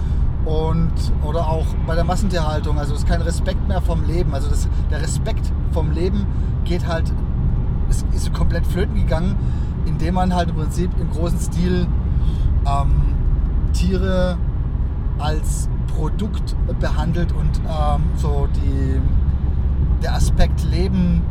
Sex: male